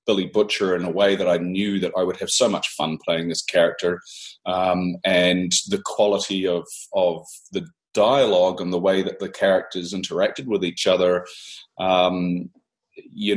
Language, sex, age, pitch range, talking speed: English, male, 30-49, 90-105 Hz, 170 wpm